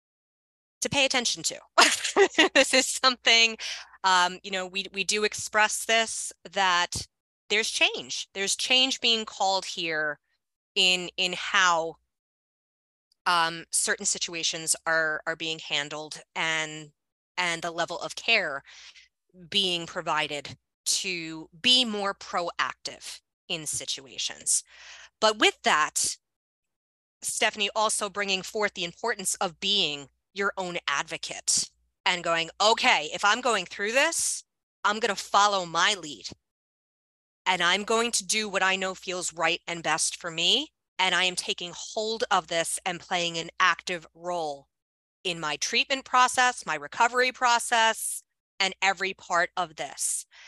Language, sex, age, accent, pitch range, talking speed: English, female, 20-39, American, 170-220 Hz, 135 wpm